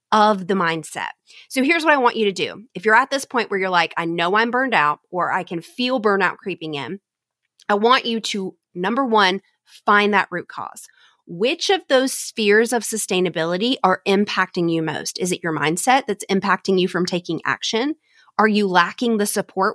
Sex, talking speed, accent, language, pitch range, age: female, 200 wpm, American, English, 185-235 Hz, 30-49